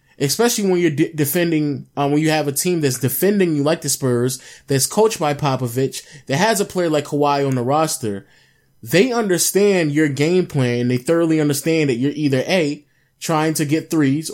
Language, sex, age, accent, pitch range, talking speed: English, male, 20-39, American, 135-165 Hz, 195 wpm